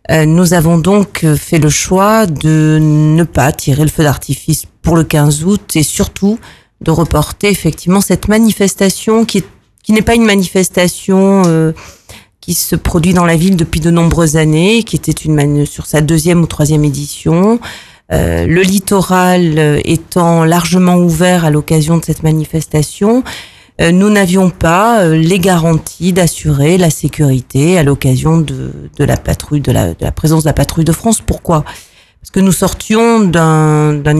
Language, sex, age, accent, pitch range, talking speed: French, female, 40-59, French, 150-185 Hz, 160 wpm